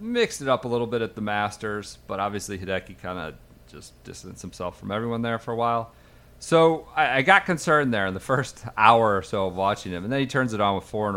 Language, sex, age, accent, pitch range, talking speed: English, male, 40-59, American, 100-125 Hz, 245 wpm